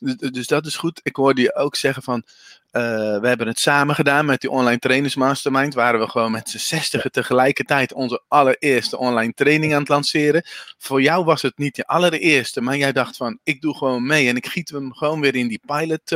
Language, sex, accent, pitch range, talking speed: Dutch, male, Dutch, 130-175 Hz, 220 wpm